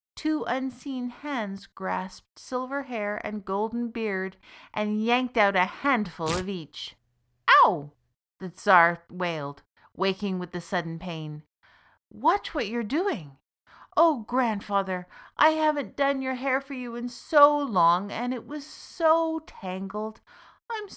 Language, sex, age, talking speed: English, female, 50-69, 135 wpm